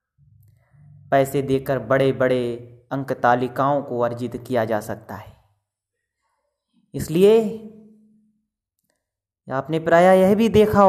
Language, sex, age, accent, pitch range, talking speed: Hindi, male, 30-49, native, 125-185 Hz, 100 wpm